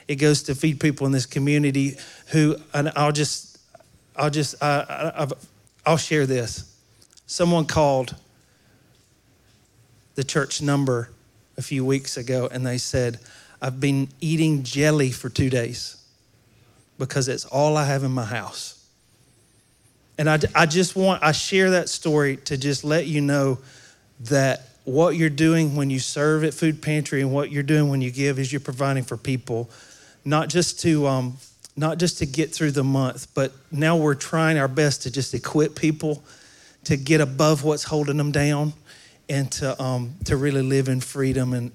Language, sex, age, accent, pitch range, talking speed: English, male, 40-59, American, 130-150 Hz, 170 wpm